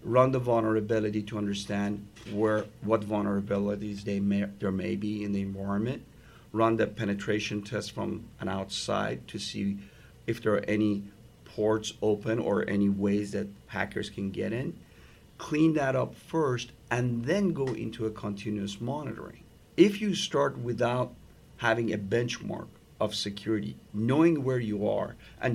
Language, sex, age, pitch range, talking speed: English, male, 50-69, 105-125 Hz, 150 wpm